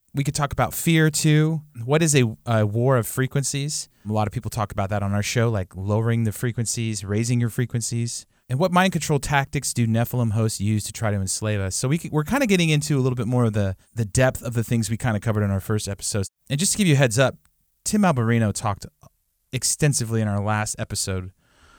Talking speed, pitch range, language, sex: 240 wpm, 105-135 Hz, English, male